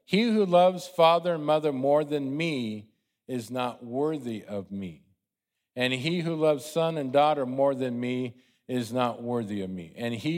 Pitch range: 115-150 Hz